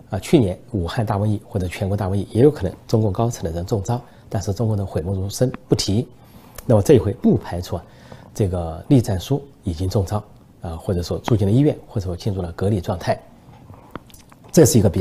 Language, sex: Chinese, male